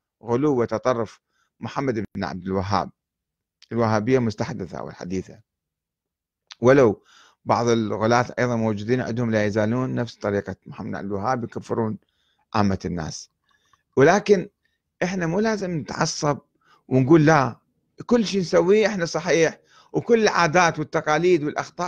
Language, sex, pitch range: Arabic, male, 110-170 Hz